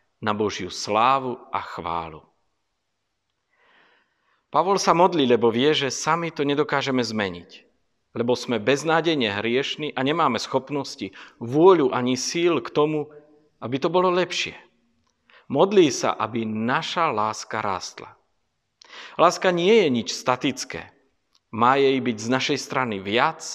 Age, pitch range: 50-69, 115-160 Hz